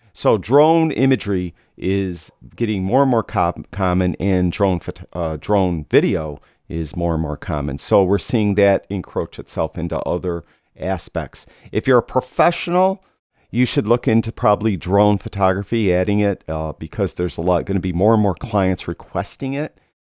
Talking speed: 170 wpm